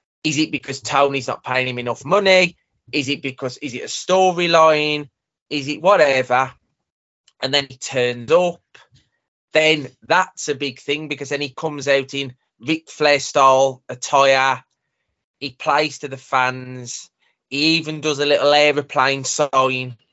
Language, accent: English, British